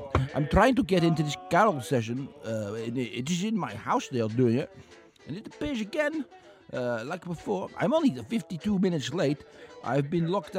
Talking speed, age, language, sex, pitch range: 195 wpm, 50-69, English, male, 145-230 Hz